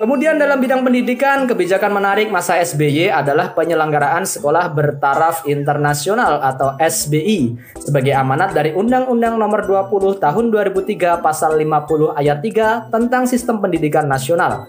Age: 20-39